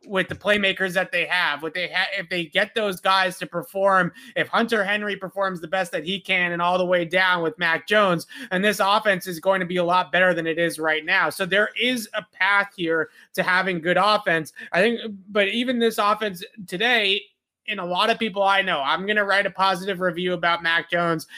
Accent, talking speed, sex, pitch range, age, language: American, 230 wpm, male, 175-200 Hz, 30-49, English